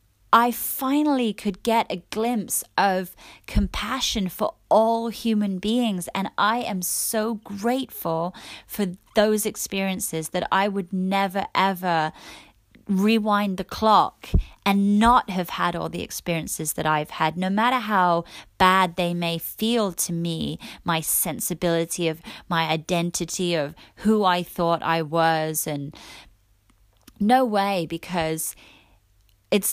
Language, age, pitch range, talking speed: English, 30-49, 160-205 Hz, 125 wpm